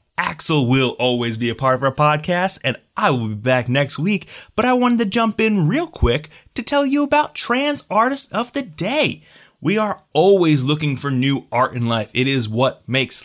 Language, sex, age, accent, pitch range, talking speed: English, male, 20-39, American, 120-175 Hz, 210 wpm